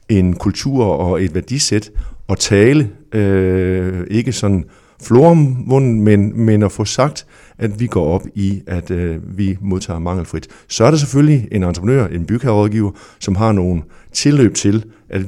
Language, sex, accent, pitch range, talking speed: Danish, male, native, 90-110 Hz, 155 wpm